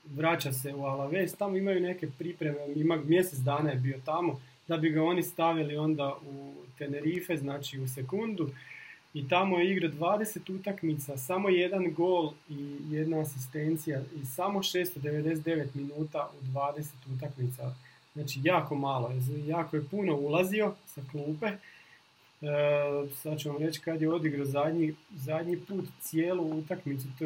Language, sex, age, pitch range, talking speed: Croatian, male, 30-49, 145-180 Hz, 145 wpm